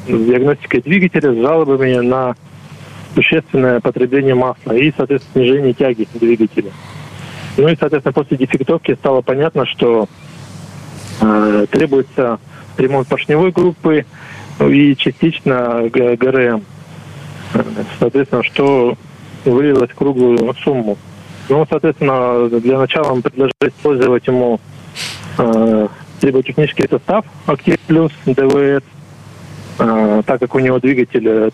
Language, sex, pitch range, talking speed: Russian, male, 120-150 Hz, 105 wpm